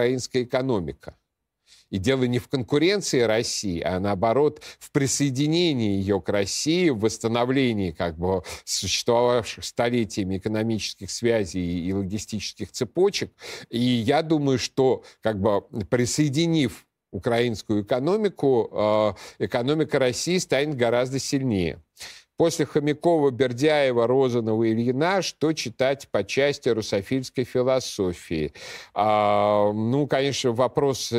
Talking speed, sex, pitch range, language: 110 wpm, male, 110-135 Hz, Russian